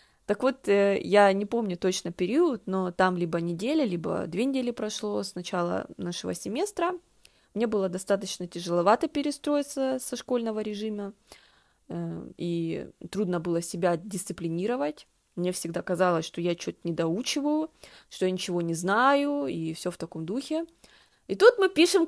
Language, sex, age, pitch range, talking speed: Russian, female, 20-39, 180-290 Hz, 145 wpm